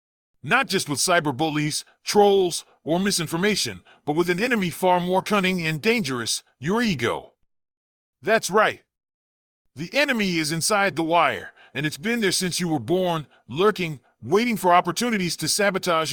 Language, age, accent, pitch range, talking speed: English, 40-59, American, 155-205 Hz, 150 wpm